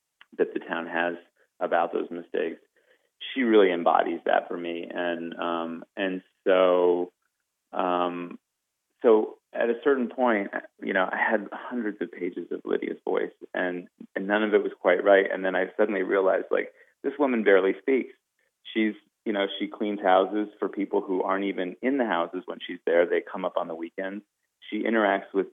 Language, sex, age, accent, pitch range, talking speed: English, male, 30-49, American, 90-115 Hz, 180 wpm